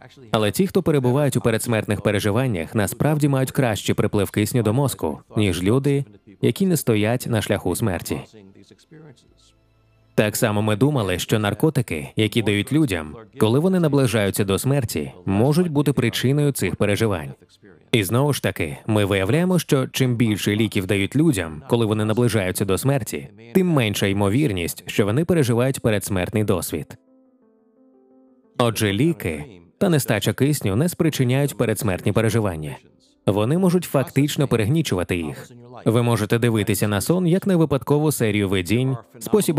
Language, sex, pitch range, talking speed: Ukrainian, male, 105-135 Hz, 140 wpm